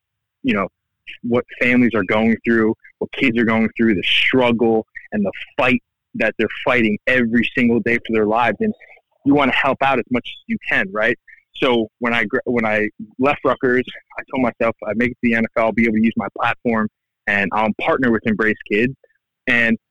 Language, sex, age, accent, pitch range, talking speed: English, male, 20-39, American, 110-140 Hz, 200 wpm